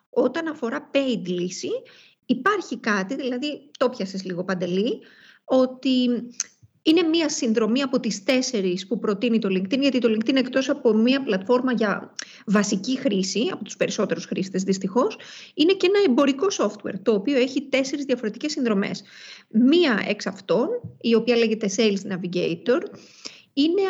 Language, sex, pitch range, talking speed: Greek, female, 220-285 Hz, 145 wpm